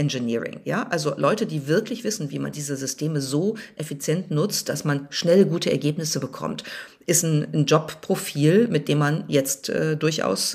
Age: 50-69